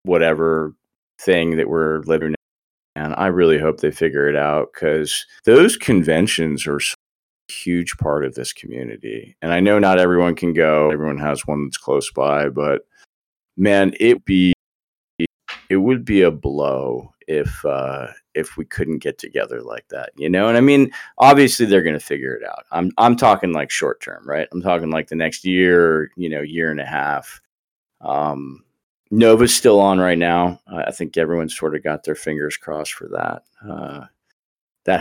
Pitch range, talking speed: 75-90 Hz, 180 wpm